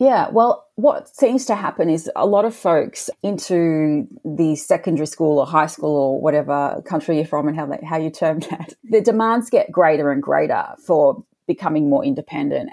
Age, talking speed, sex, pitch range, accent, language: 30-49, 185 wpm, female, 150-195 Hz, Australian, English